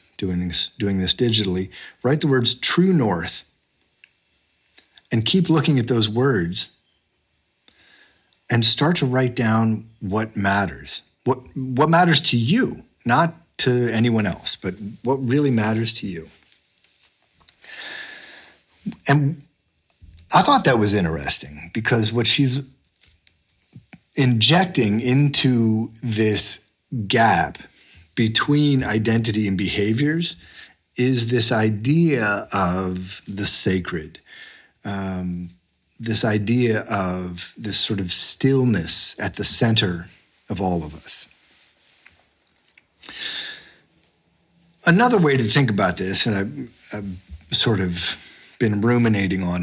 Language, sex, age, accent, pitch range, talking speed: English, male, 40-59, American, 95-130 Hz, 110 wpm